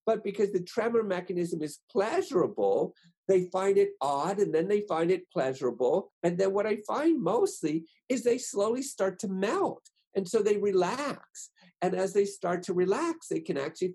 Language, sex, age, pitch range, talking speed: Arabic, male, 50-69, 165-220 Hz, 180 wpm